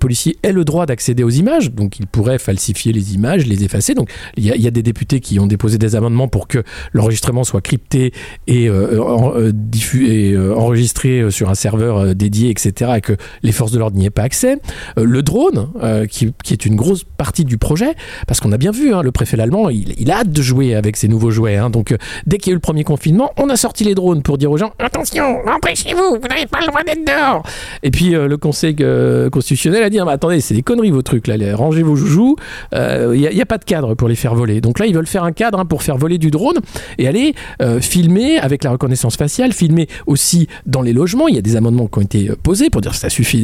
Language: French